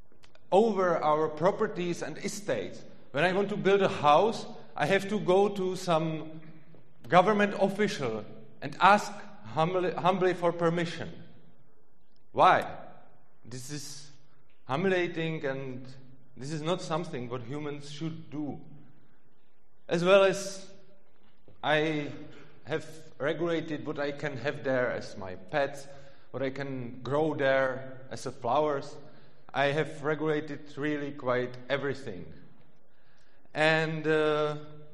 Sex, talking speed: male, 120 wpm